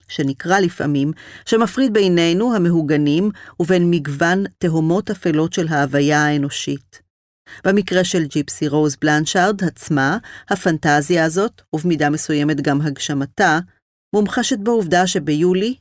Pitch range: 150-190 Hz